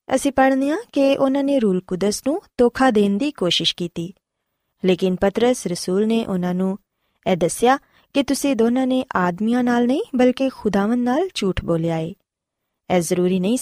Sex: female